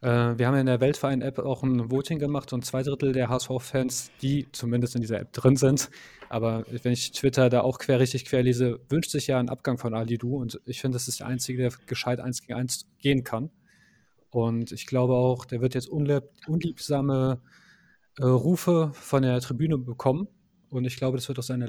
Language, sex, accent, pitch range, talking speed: German, male, German, 125-145 Hz, 200 wpm